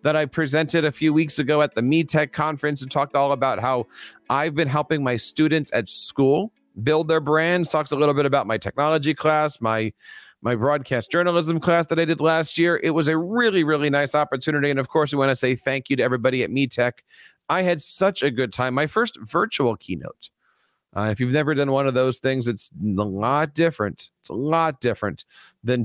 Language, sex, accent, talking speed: English, male, American, 215 wpm